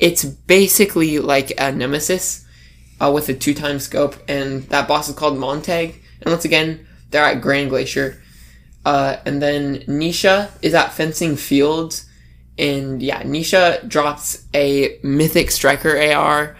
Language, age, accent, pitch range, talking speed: English, 20-39, American, 135-165 Hz, 140 wpm